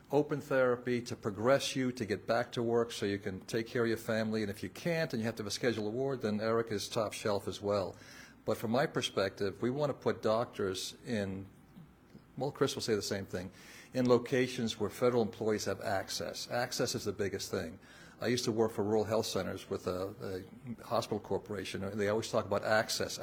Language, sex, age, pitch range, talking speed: English, male, 50-69, 100-125 Hz, 220 wpm